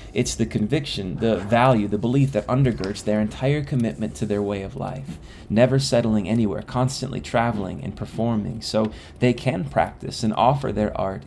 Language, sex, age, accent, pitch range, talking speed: English, male, 20-39, American, 95-120 Hz, 170 wpm